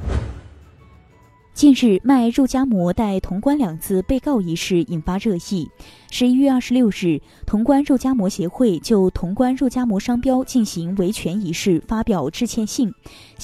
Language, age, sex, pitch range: Chinese, 20-39, female, 175-250 Hz